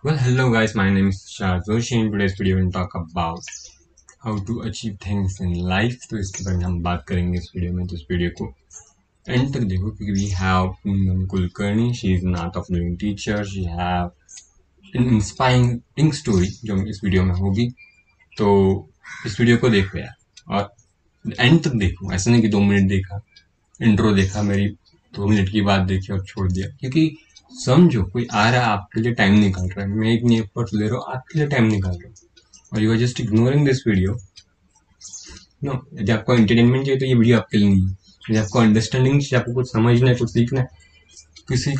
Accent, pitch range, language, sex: native, 95-120 Hz, Hindi, male